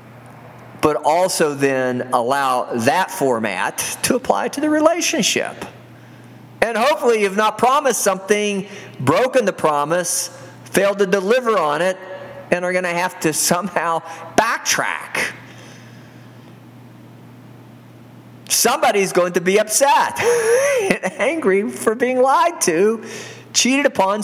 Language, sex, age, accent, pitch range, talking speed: English, male, 50-69, American, 185-290 Hz, 115 wpm